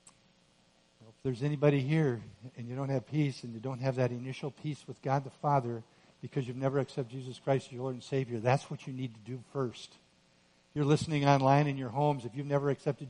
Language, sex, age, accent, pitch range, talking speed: English, male, 50-69, American, 130-165 Hz, 215 wpm